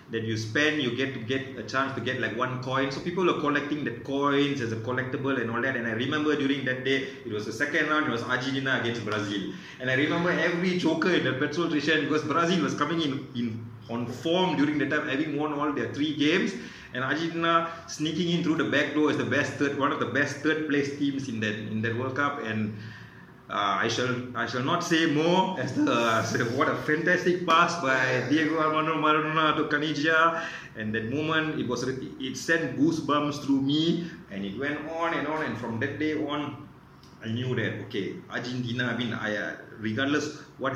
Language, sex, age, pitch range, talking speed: English, male, 30-49, 115-150 Hz, 215 wpm